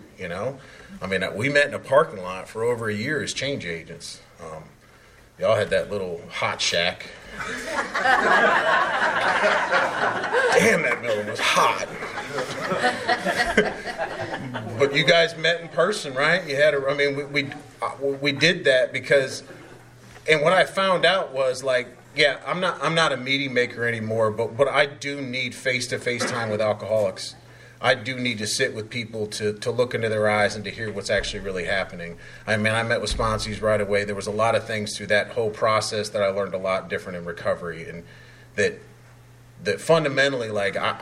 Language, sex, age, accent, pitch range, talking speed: English, male, 30-49, American, 105-130 Hz, 185 wpm